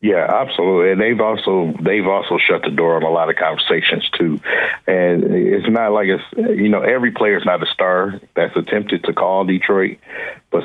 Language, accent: English, American